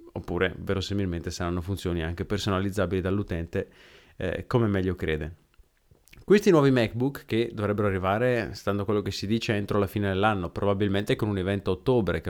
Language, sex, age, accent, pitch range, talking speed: Italian, male, 30-49, native, 90-115 Hz, 160 wpm